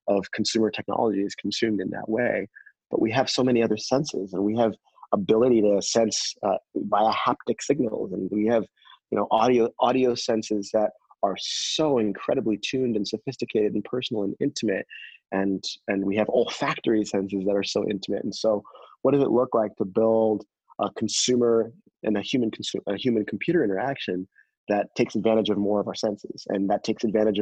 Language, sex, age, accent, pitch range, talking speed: English, male, 30-49, American, 100-110 Hz, 185 wpm